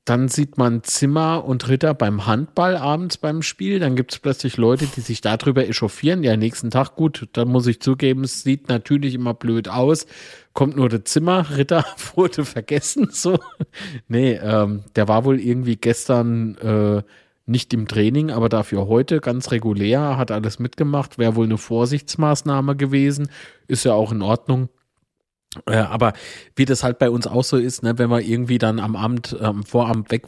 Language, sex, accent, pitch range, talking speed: German, male, German, 110-130 Hz, 180 wpm